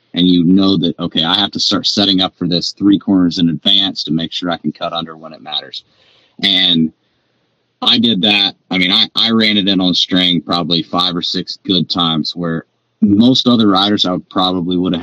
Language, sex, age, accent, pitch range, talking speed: English, male, 30-49, American, 80-95 Hz, 215 wpm